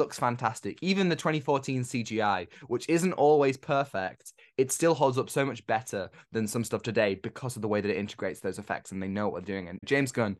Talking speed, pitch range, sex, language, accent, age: 225 wpm, 105-135 Hz, male, English, British, 10-29